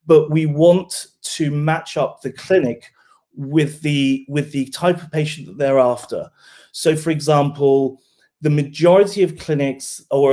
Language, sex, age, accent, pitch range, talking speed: English, male, 30-49, British, 130-155 Hz, 145 wpm